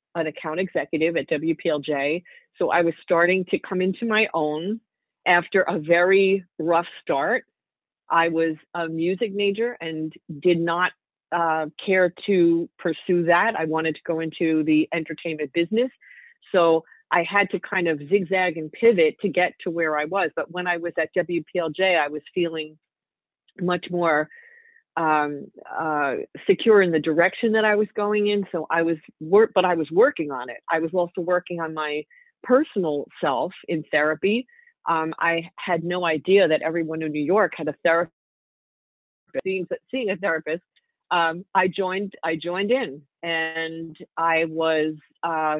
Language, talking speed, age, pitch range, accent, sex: English, 165 wpm, 40-59, 160-195 Hz, American, female